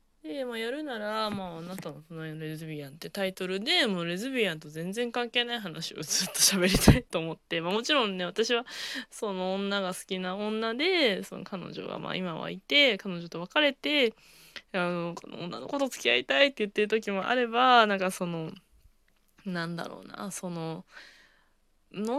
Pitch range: 170-225 Hz